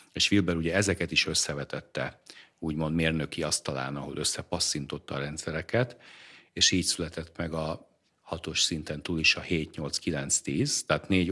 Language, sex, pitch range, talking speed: Hungarian, male, 80-90 Hz, 155 wpm